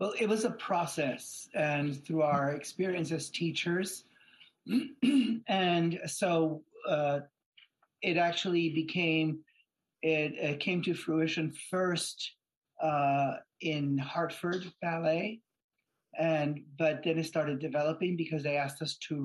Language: English